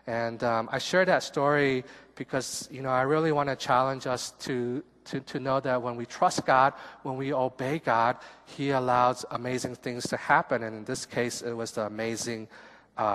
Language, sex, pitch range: Korean, male, 115-140 Hz